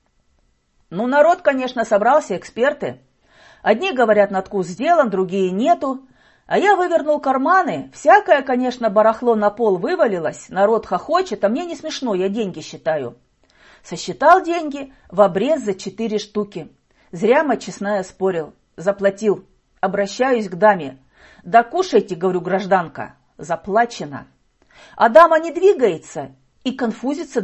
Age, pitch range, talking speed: 40-59, 185-280 Hz, 125 wpm